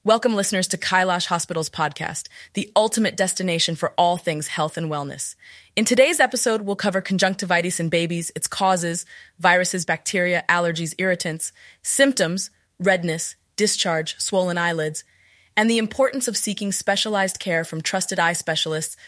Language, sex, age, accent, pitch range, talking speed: Hindi, female, 20-39, American, 165-200 Hz, 140 wpm